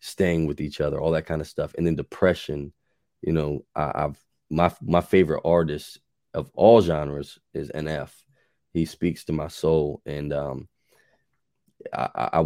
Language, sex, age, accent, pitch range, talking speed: English, male, 20-39, American, 75-85 Hz, 165 wpm